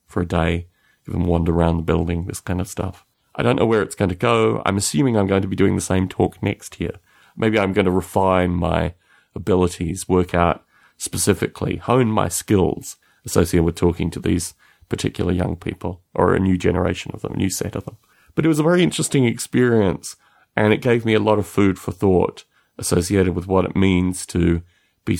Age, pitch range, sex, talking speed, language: 30-49, 85-105 Hz, male, 210 wpm, English